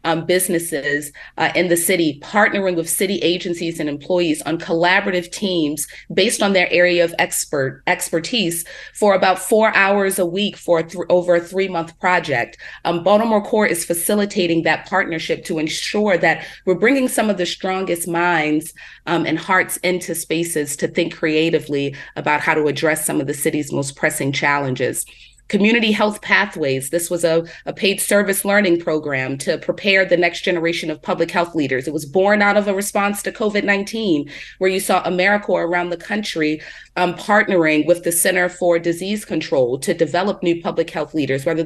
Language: English